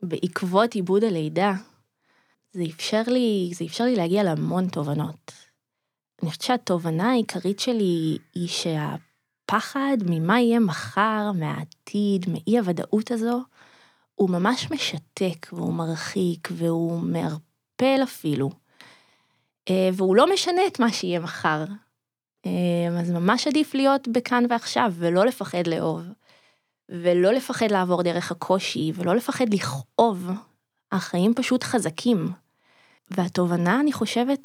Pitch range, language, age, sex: 175-235 Hz, Hebrew, 20-39, female